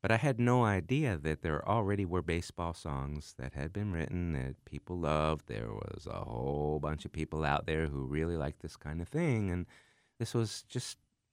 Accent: American